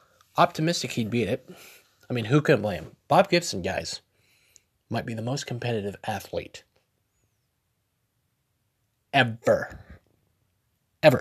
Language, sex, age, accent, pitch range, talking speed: English, male, 20-39, American, 105-130 Hz, 105 wpm